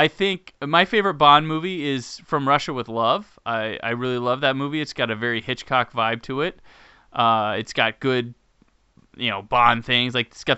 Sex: male